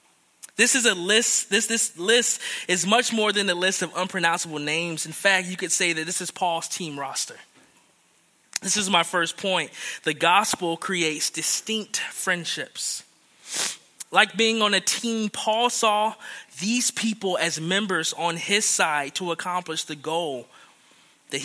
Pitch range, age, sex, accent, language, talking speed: 160-205 Hz, 20-39, male, American, English, 155 wpm